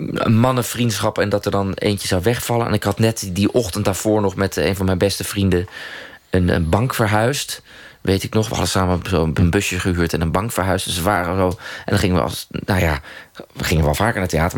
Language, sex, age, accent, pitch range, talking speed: Dutch, male, 20-39, Dutch, 85-105 Hz, 245 wpm